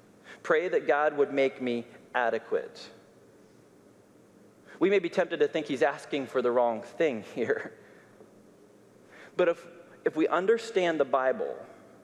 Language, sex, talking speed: English, male, 135 wpm